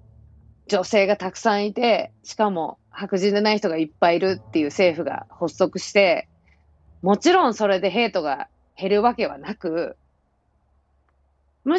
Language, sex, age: Japanese, female, 30-49